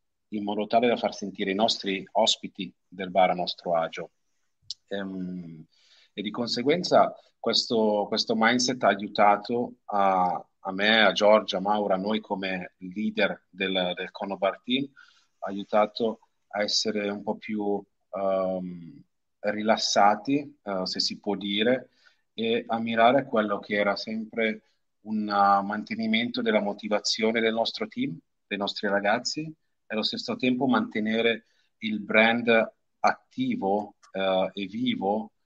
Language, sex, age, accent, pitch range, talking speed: Italian, male, 30-49, native, 100-115 Hz, 135 wpm